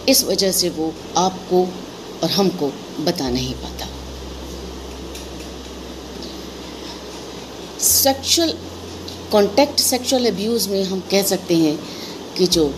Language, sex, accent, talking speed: Hindi, female, native, 100 wpm